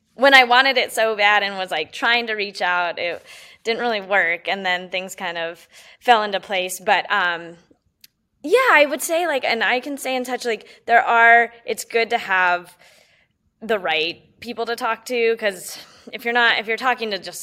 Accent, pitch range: American, 180-235 Hz